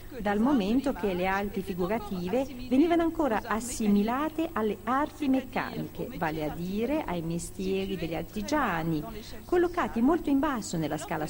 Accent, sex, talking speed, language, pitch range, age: native, female, 135 wpm, Italian, 180-265 Hz, 50-69